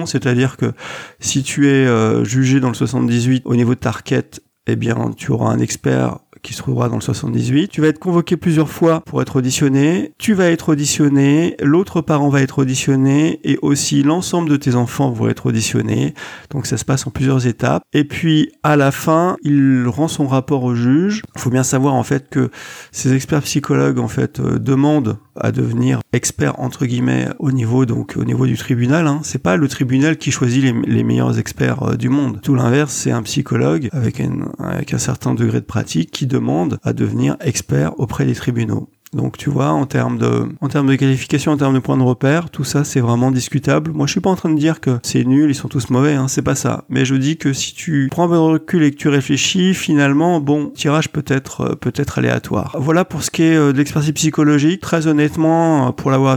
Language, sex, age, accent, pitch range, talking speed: French, male, 40-59, French, 130-150 Hz, 215 wpm